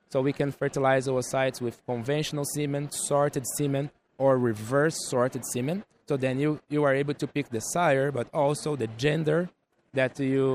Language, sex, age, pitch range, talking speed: English, male, 20-39, 120-145 Hz, 170 wpm